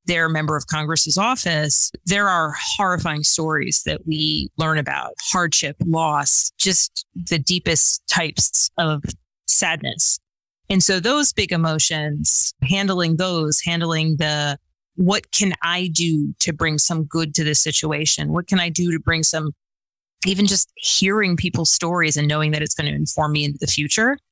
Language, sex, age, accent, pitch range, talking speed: English, female, 30-49, American, 150-175 Hz, 160 wpm